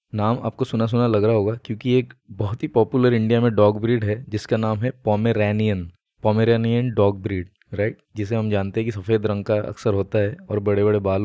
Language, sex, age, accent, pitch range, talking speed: Hindi, male, 20-39, native, 105-120 Hz, 215 wpm